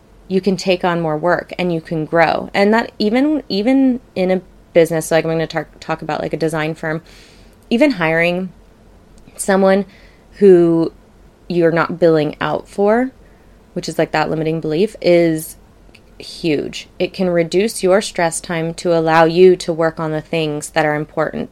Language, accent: English, American